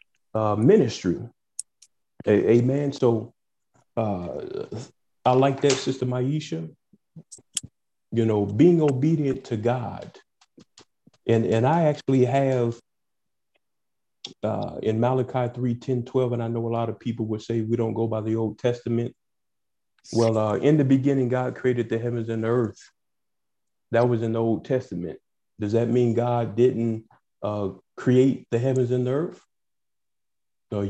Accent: American